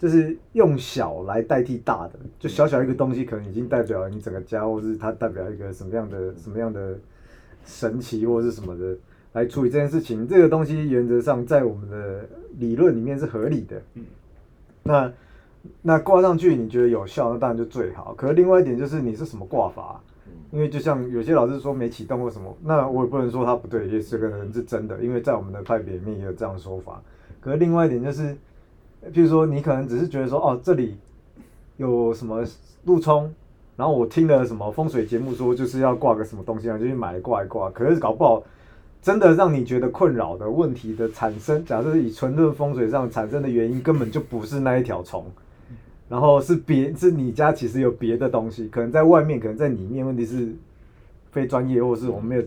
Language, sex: Chinese, male